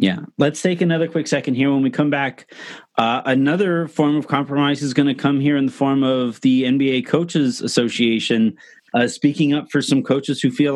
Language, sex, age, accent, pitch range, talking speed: English, male, 30-49, American, 120-150 Hz, 205 wpm